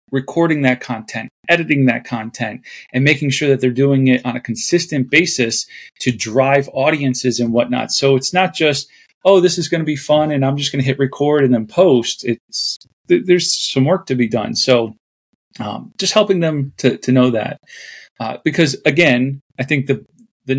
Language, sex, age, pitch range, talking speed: English, male, 30-49, 125-165 Hz, 195 wpm